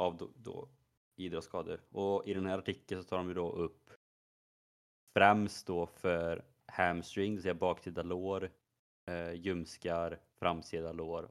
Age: 30-49